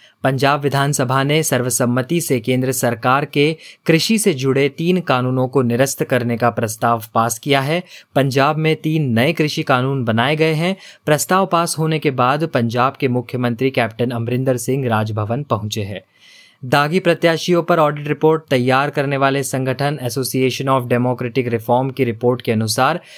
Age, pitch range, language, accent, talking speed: 20-39, 125-155 Hz, Hindi, native, 160 wpm